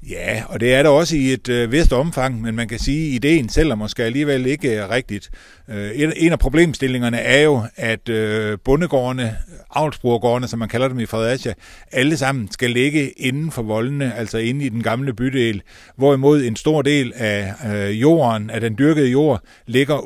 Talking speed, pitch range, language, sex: 180 wpm, 110-140 Hz, Danish, male